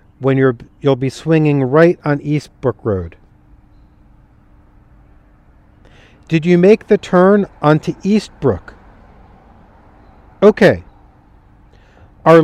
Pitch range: 135-180 Hz